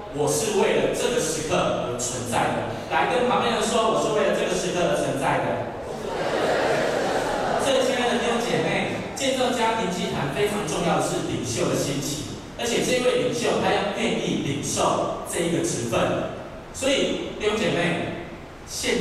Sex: male